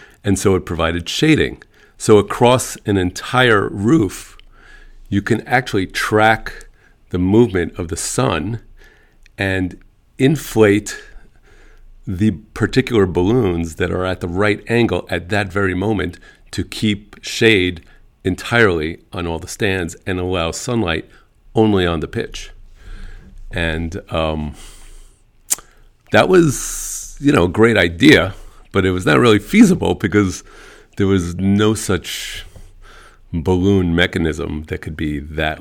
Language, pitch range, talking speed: English, 80-105 Hz, 125 wpm